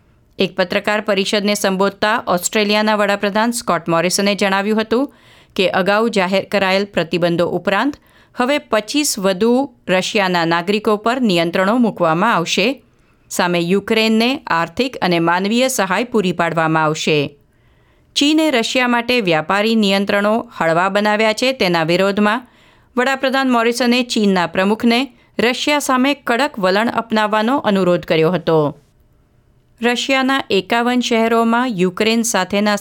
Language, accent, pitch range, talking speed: Gujarati, native, 175-230 Hz, 95 wpm